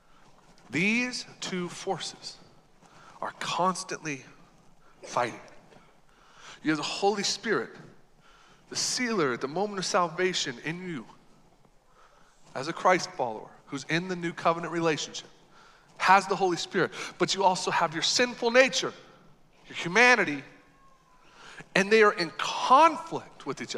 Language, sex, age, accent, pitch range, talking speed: English, male, 40-59, American, 170-210 Hz, 125 wpm